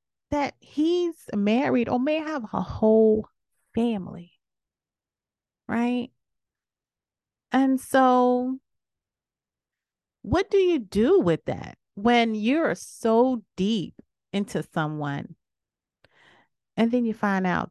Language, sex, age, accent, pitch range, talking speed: English, female, 30-49, American, 170-250 Hz, 100 wpm